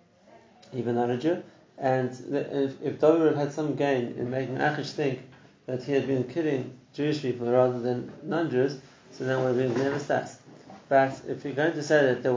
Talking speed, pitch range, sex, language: 205 wpm, 125-150 Hz, male, English